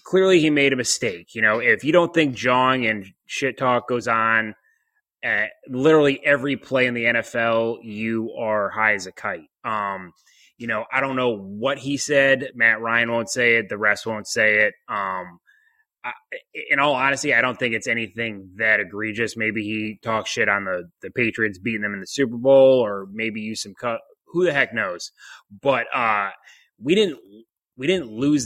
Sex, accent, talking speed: male, American, 190 wpm